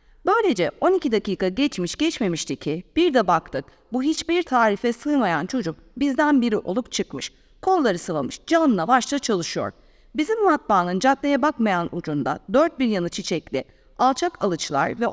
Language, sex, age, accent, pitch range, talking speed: Turkish, female, 40-59, native, 185-305 Hz, 140 wpm